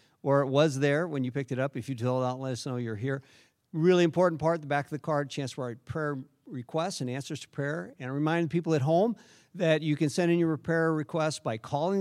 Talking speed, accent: 255 wpm, American